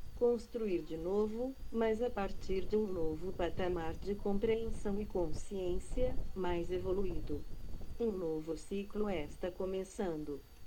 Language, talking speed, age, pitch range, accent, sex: Portuguese, 120 wpm, 40-59, 175-220 Hz, Brazilian, female